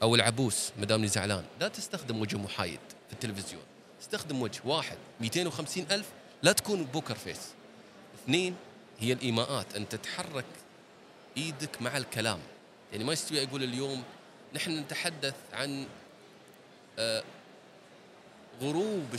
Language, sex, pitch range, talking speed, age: Arabic, male, 110-160 Hz, 115 wpm, 30-49